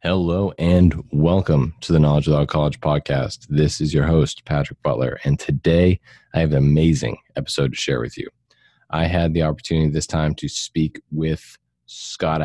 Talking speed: 175 wpm